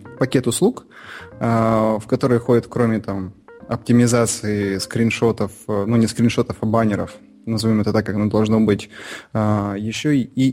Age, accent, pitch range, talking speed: 20-39, native, 110-125 Hz, 125 wpm